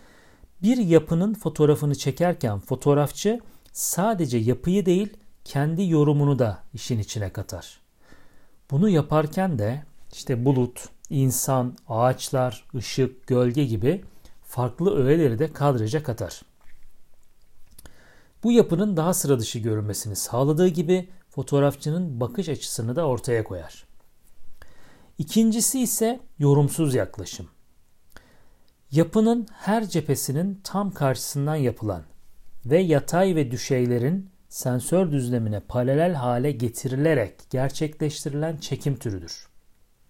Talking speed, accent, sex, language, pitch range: 95 wpm, native, male, Turkish, 125-175 Hz